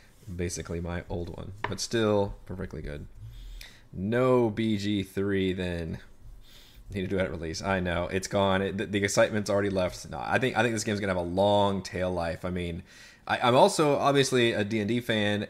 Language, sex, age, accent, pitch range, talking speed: English, male, 30-49, American, 90-110 Hz, 180 wpm